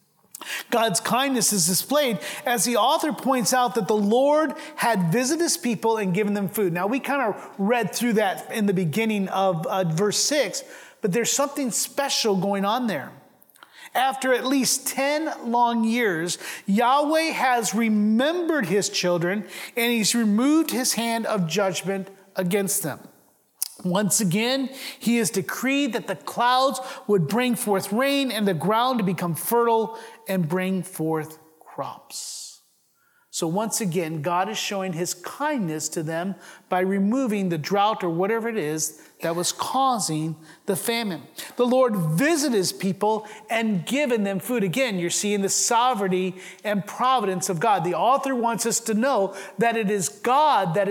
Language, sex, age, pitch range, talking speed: English, male, 30-49, 190-245 Hz, 160 wpm